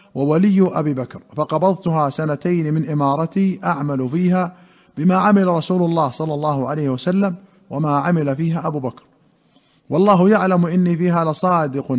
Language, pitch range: Arabic, 155-190 Hz